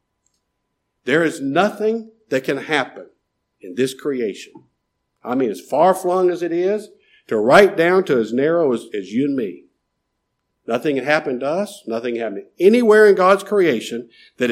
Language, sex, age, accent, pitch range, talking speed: English, male, 50-69, American, 135-220 Hz, 170 wpm